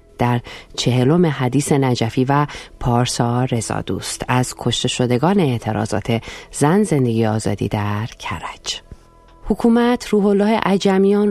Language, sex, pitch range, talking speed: Persian, female, 125-170 Hz, 105 wpm